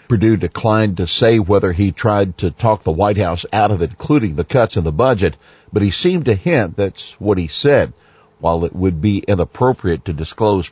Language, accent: English, American